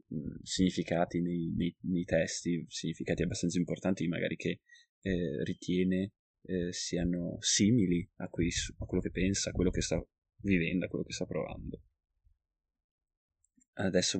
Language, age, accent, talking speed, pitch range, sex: Italian, 20-39, native, 125 wpm, 85-95 Hz, male